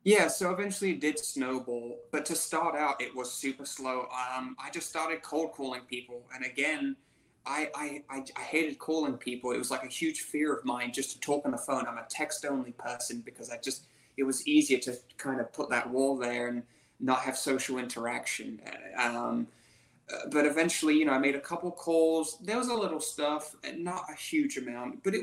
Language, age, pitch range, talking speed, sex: English, 20-39, 130-175 Hz, 210 wpm, male